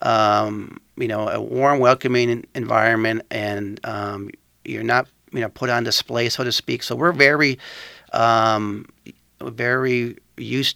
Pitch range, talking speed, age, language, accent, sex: 115-135 Hz, 140 wpm, 50-69, English, American, male